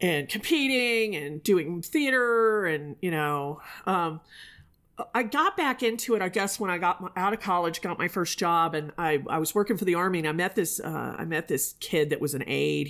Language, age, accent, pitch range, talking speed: English, 40-59, American, 155-205 Hz, 220 wpm